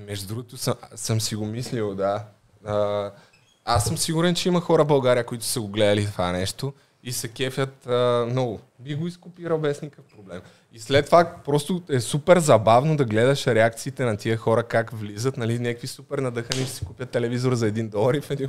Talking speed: 200 wpm